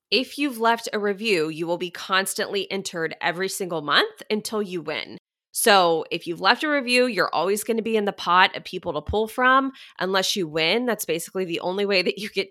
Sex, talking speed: female, 220 wpm